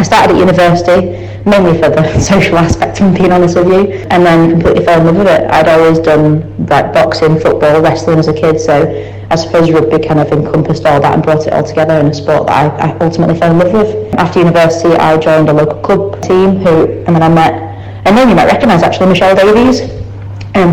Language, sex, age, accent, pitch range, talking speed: English, female, 20-39, British, 150-175 Hz, 230 wpm